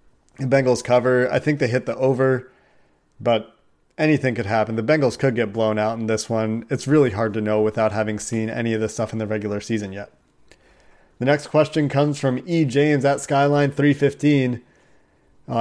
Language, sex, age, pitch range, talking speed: English, male, 30-49, 115-135 Hz, 185 wpm